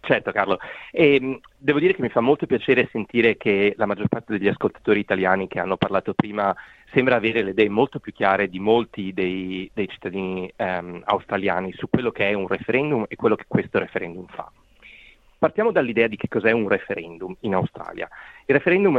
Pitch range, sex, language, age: 95-125 Hz, male, Italian, 30-49